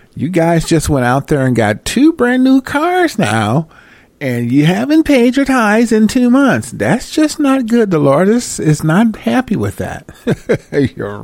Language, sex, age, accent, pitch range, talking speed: English, male, 50-69, American, 110-165 Hz, 185 wpm